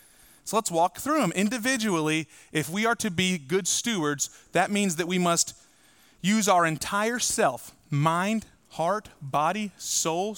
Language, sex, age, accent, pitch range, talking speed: English, male, 30-49, American, 150-195 Hz, 150 wpm